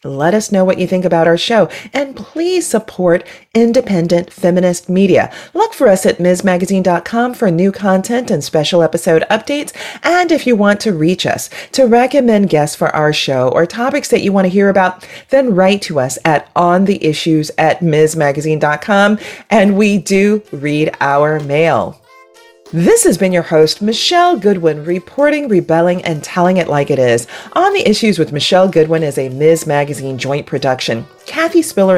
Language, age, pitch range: English, 40-59, 160-220 Hz